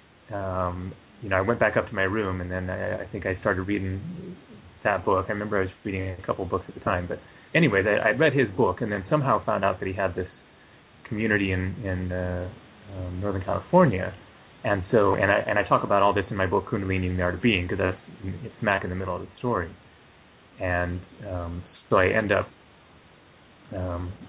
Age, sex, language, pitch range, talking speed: 30-49, male, English, 90-110 Hz, 220 wpm